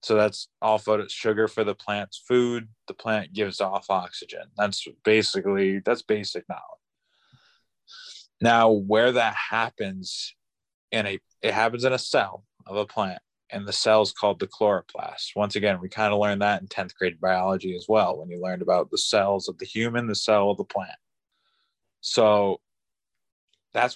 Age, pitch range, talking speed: 20-39, 100-120 Hz, 170 wpm